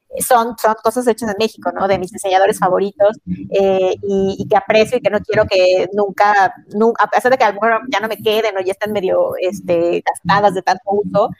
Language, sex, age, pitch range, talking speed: Spanish, female, 30-49, 190-220 Hz, 225 wpm